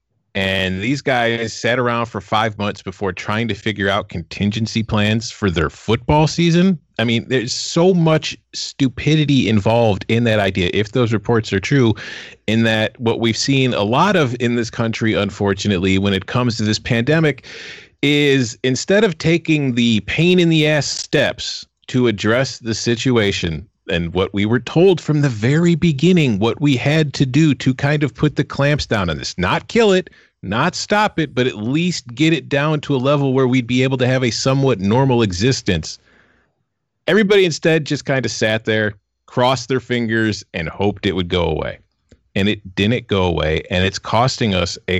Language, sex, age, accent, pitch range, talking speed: English, male, 30-49, American, 100-145 Hz, 185 wpm